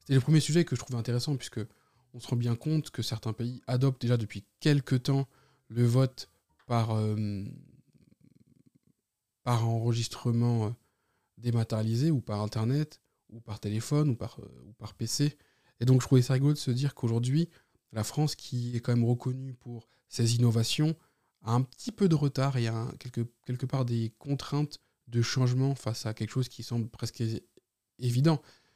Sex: male